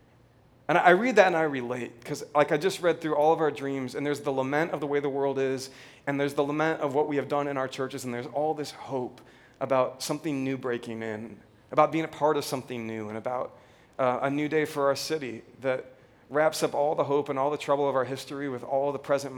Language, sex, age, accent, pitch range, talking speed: English, male, 30-49, American, 125-150 Hz, 255 wpm